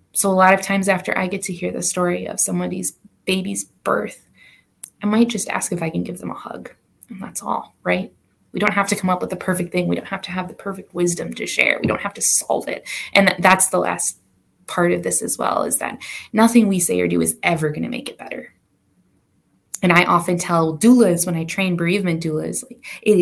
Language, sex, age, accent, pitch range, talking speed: English, female, 20-39, American, 165-195 Hz, 235 wpm